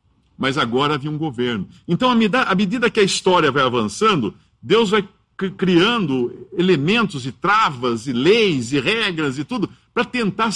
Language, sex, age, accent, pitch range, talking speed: English, male, 60-79, Brazilian, 110-175 Hz, 165 wpm